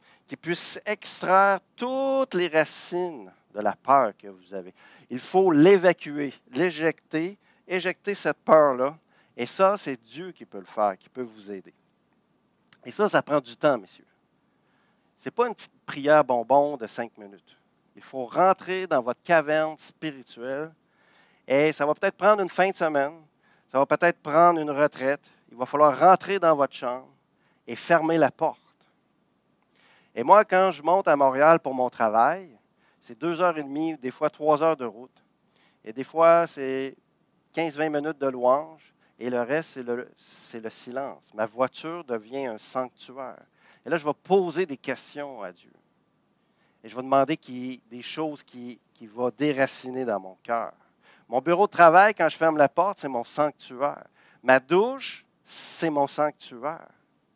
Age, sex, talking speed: 50-69, male, 165 wpm